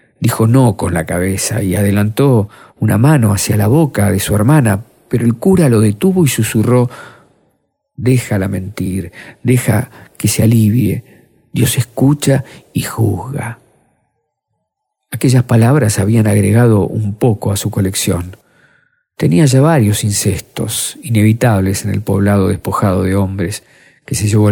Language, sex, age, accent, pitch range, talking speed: Spanish, male, 50-69, Argentinian, 105-130 Hz, 135 wpm